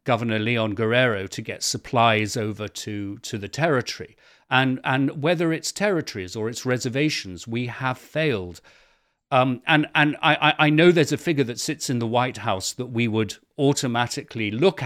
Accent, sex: British, male